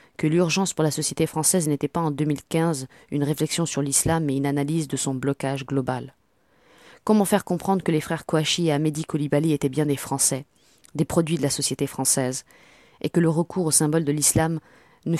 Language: French